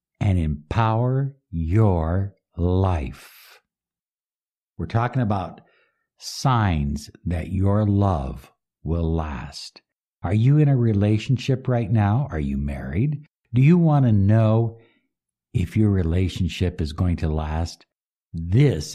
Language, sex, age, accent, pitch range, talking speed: English, male, 60-79, American, 85-120 Hz, 115 wpm